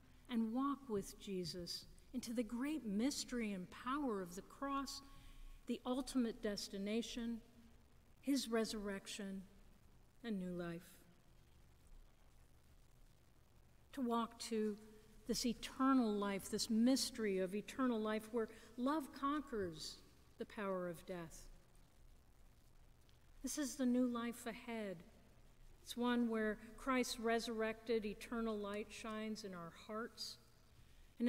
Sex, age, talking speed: female, 50-69, 110 wpm